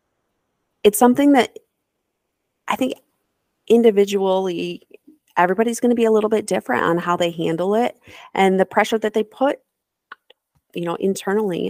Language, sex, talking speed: English, female, 140 wpm